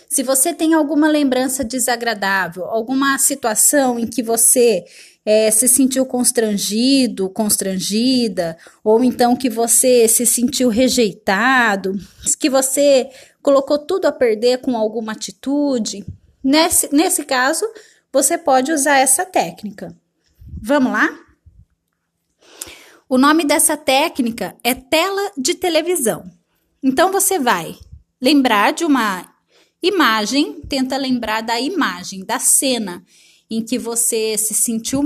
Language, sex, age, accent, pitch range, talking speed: Portuguese, female, 20-39, Brazilian, 225-295 Hz, 115 wpm